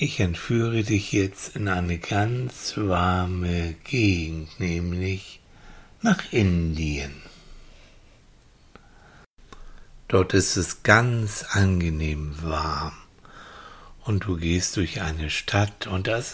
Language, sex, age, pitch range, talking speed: German, male, 60-79, 90-115 Hz, 100 wpm